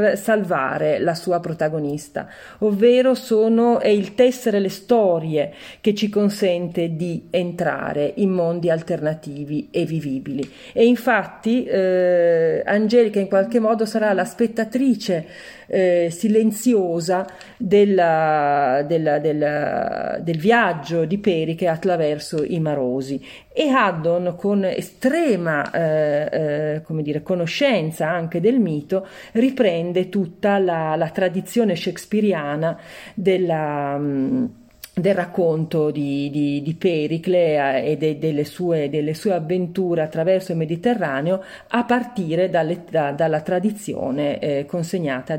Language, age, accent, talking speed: Italian, 40-59, native, 110 wpm